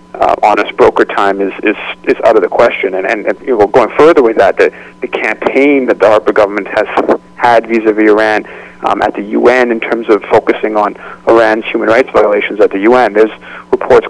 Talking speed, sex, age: 210 wpm, male, 40-59